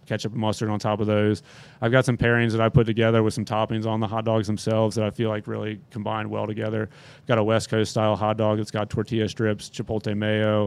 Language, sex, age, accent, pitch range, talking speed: English, male, 30-49, American, 105-115 Hz, 255 wpm